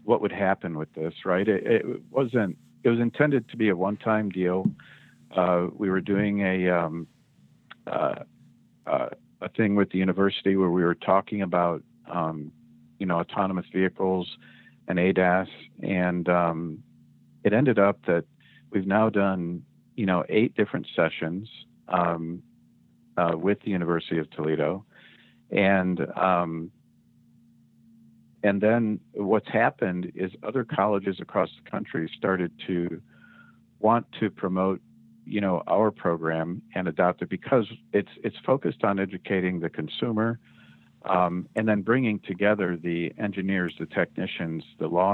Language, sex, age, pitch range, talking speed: English, male, 50-69, 80-100 Hz, 140 wpm